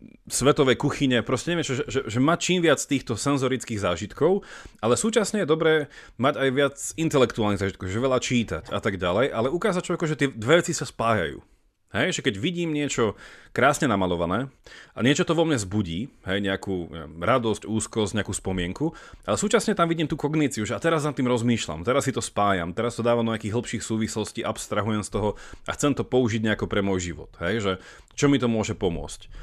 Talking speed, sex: 200 wpm, male